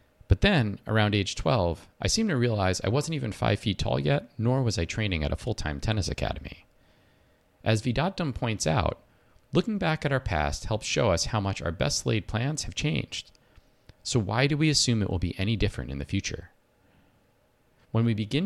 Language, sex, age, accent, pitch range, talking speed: English, male, 40-59, American, 85-125 Hz, 195 wpm